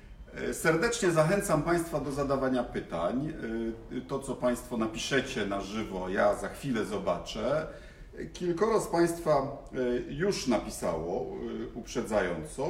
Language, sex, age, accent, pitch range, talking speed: Polish, male, 50-69, native, 115-170 Hz, 105 wpm